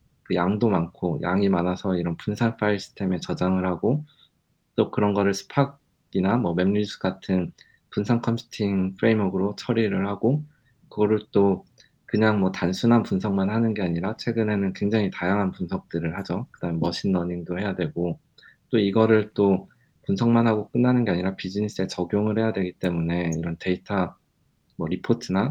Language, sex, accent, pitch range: Korean, male, native, 90-115 Hz